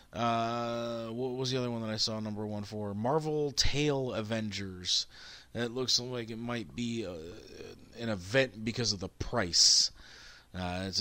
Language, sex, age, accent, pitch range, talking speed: English, male, 30-49, American, 110-155 Hz, 165 wpm